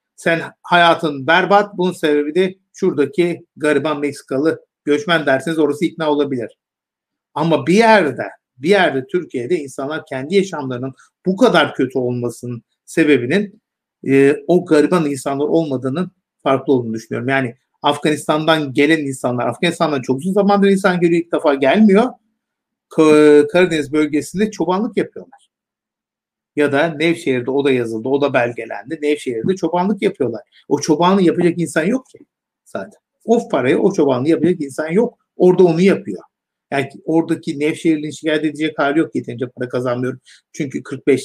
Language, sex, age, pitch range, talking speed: Turkish, male, 50-69, 140-180 Hz, 135 wpm